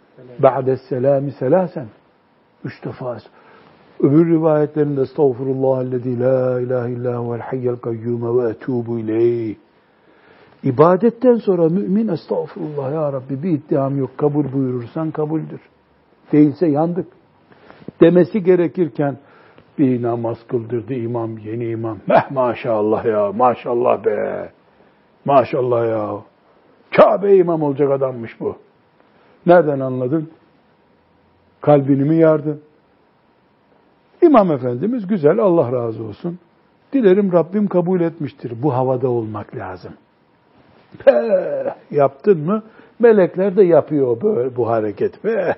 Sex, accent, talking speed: male, native, 100 wpm